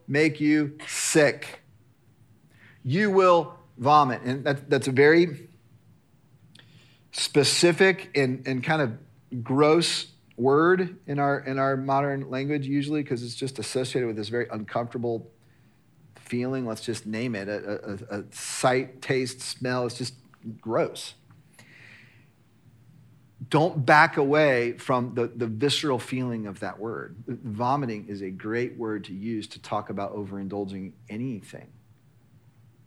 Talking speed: 130 wpm